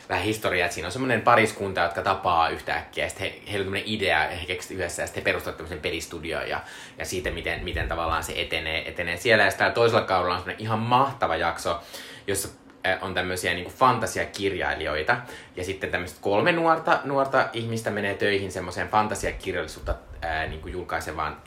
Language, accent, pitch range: Finnish, native, 85-110 Hz